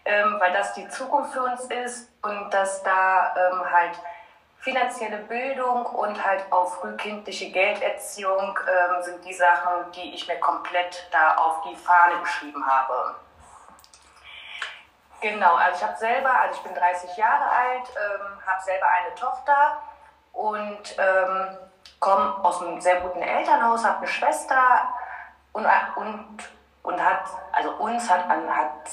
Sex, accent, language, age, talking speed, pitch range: female, German, German, 30-49, 145 wpm, 175-225 Hz